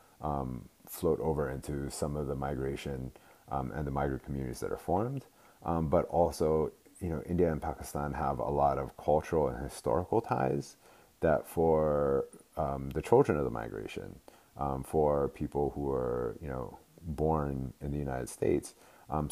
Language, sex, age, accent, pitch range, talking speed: English, male, 30-49, American, 70-90 Hz, 165 wpm